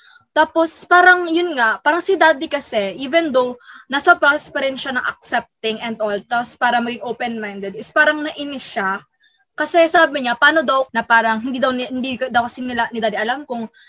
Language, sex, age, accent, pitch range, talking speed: Filipino, female, 20-39, native, 225-305 Hz, 175 wpm